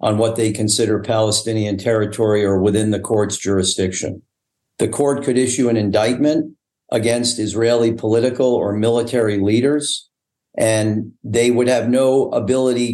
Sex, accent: male, American